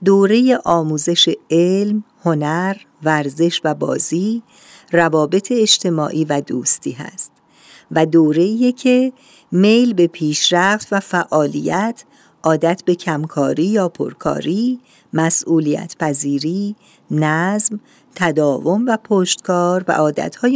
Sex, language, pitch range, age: female, Persian, 155-210 Hz, 50-69